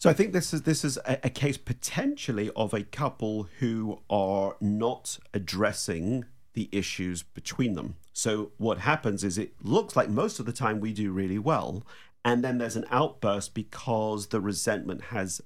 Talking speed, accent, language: 180 wpm, British, English